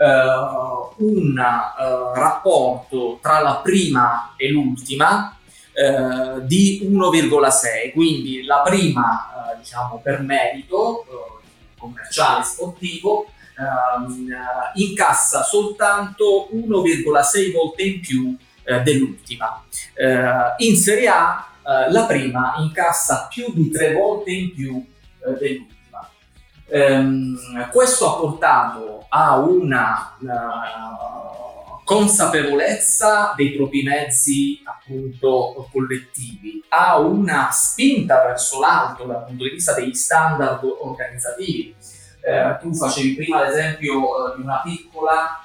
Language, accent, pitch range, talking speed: Italian, native, 130-170 Hz, 110 wpm